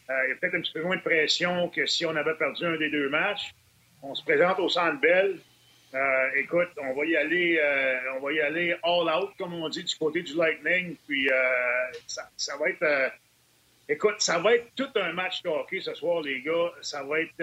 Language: French